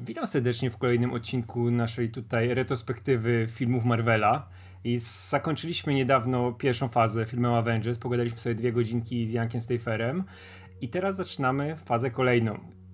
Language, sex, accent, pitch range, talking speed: Polish, male, native, 115-150 Hz, 135 wpm